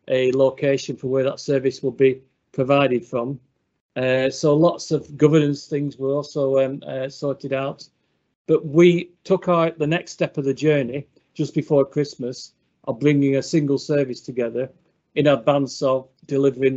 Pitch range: 130-150 Hz